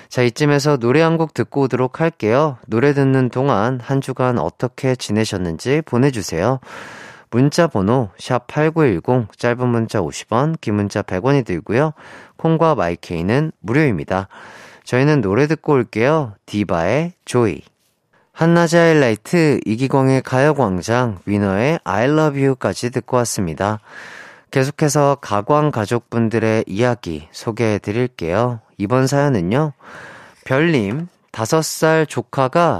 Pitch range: 110-150 Hz